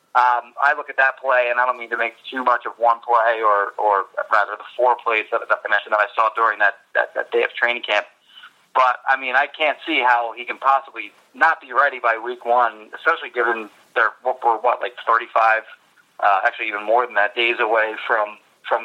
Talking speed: 215 wpm